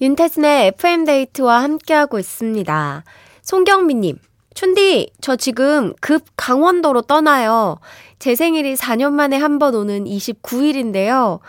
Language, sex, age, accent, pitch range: Korean, female, 20-39, native, 210-300 Hz